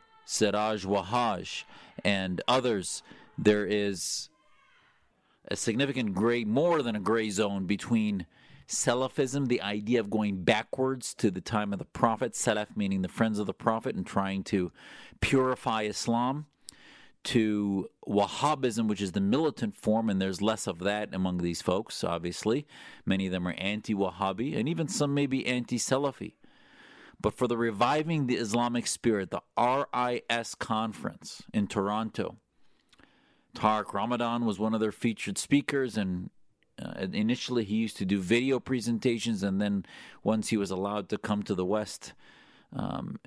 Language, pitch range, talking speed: English, 95-120 Hz, 150 wpm